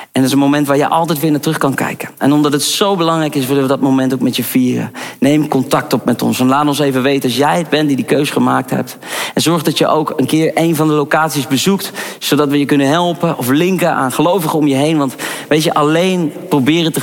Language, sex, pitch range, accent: Dutch, male, 135-155 Hz, Dutch